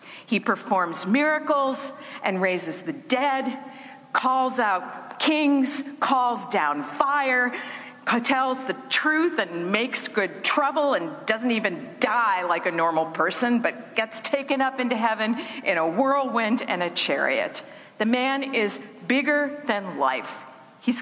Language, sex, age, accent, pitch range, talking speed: English, female, 50-69, American, 190-270 Hz, 135 wpm